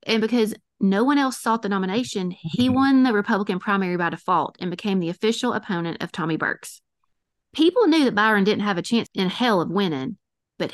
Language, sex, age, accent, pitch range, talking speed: English, female, 30-49, American, 175-225 Hz, 200 wpm